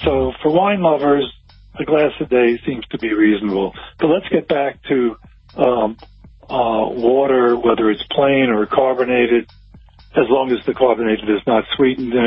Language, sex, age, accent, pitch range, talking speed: English, male, 50-69, American, 105-140 Hz, 165 wpm